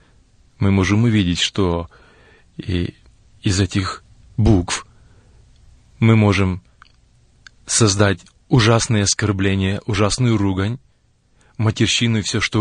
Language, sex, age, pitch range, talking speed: Russian, male, 30-49, 105-140 Hz, 90 wpm